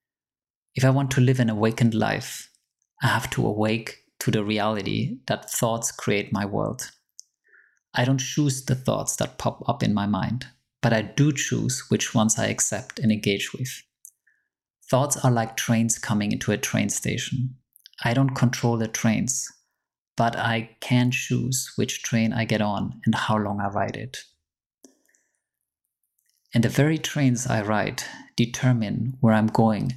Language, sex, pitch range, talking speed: English, male, 110-130 Hz, 160 wpm